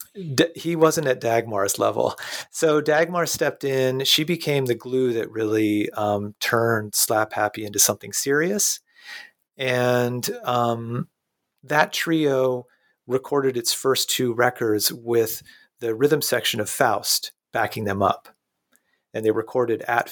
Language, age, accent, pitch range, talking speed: English, 30-49, American, 110-145 Hz, 130 wpm